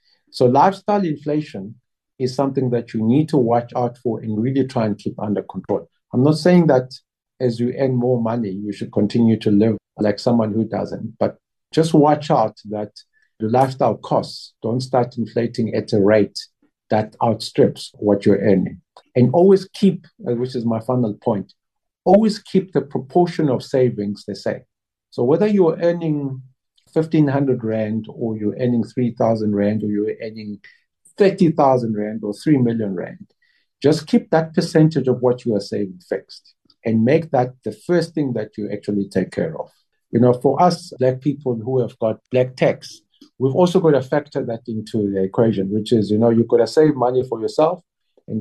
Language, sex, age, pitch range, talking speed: English, male, 50-69, 110-145 Hz, 180 wpm